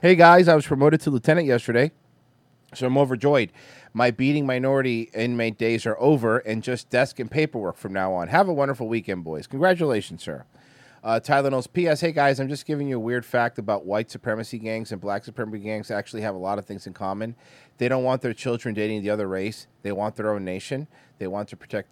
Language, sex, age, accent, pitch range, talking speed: English, male, 30-49, American, 115-195 Hz, 220 wpm